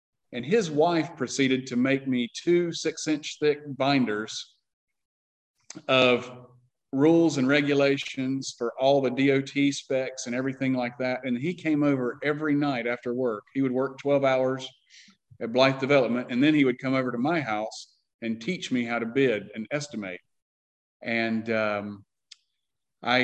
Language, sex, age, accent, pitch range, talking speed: English, male, 40-59, American, 125-155 Hz, 160 wpm